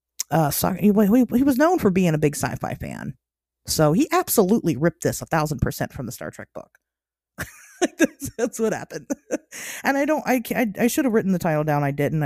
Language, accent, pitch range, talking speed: English, American, 150-235 Hz, 215 wpm